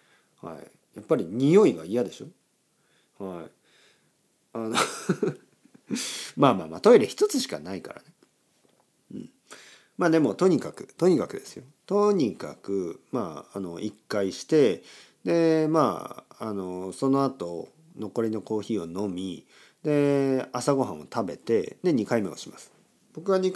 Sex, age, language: male, 40-59, Japanese